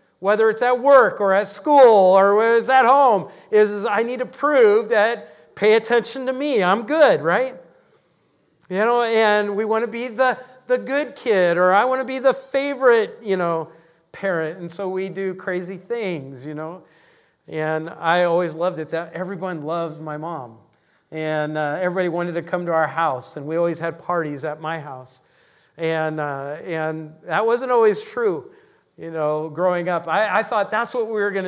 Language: English